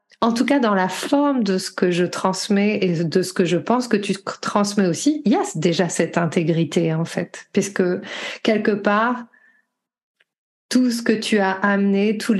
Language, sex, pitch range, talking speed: French, female, 180-220 Hz, 190 wpm